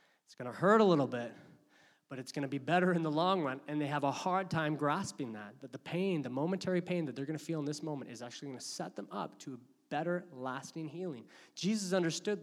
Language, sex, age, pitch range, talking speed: English, male, 20-39, 135-180 Hz, 255 wpm